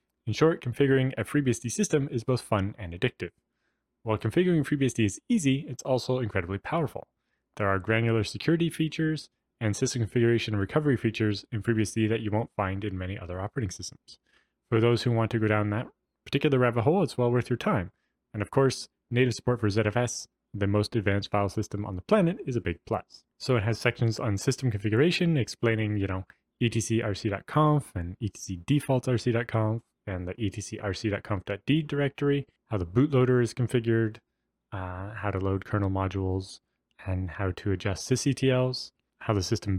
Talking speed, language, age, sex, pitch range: 170 wpm, English, 20-39, male, 100-125 Hz